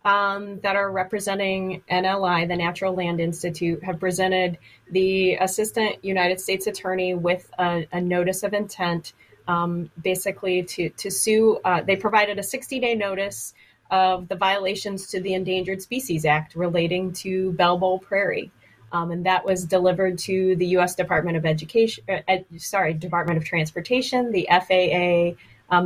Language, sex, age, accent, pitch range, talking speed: English, female, 20-39, American, 165-190 Hz, 155 wpm